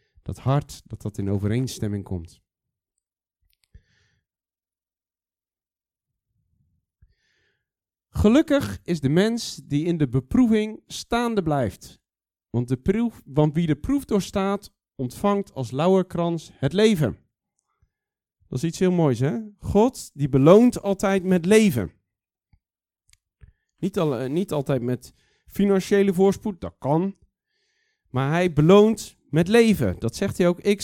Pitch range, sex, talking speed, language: 130-200 Hz, male, 120 wpm, Dutch